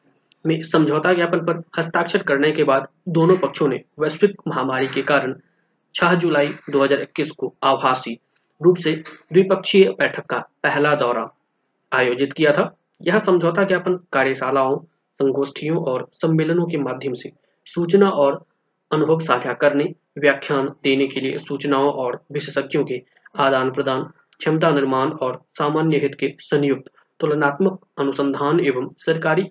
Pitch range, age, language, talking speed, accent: 140-170 Hz, 20-39, Hindi, 130 wpm, native